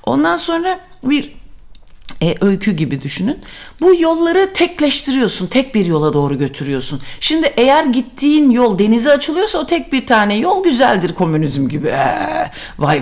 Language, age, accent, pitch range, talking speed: Turkish, 60-79, native, 185-295 Hz, 140 wpm